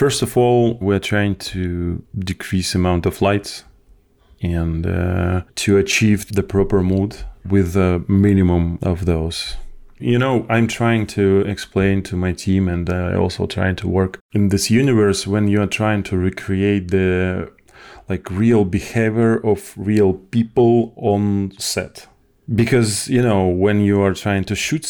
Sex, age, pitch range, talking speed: male, 30-49, 90-110 Hz, 155 wpm